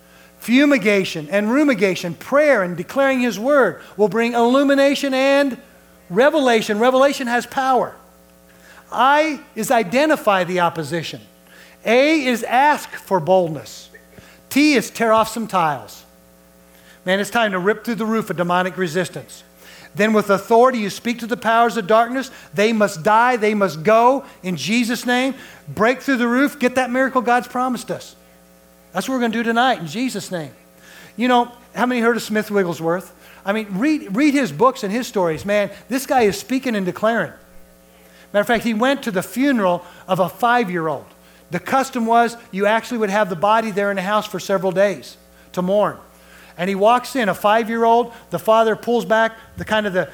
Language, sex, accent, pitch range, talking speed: English, male, American, 175-240 Hz, 180 wpm